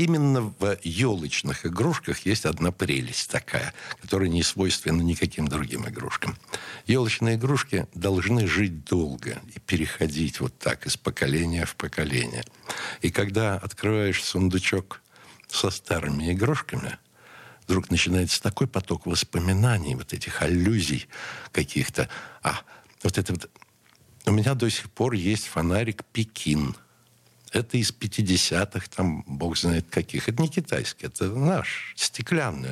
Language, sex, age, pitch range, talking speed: Russian, male, 60-79, 80-115 Hz, 125 wpm